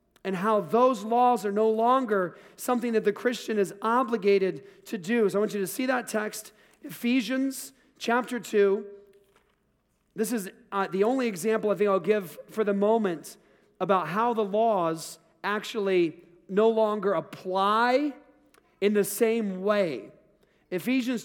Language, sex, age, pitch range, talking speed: English, male, 40-59, 195-250 Hz, 145 wpm